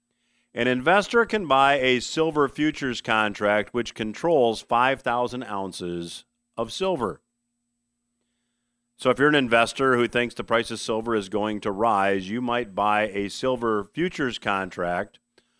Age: 50-69